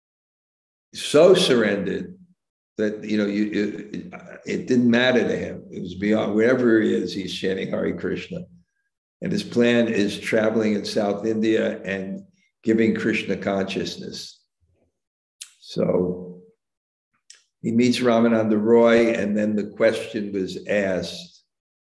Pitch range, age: 95-120 Hz, 60-79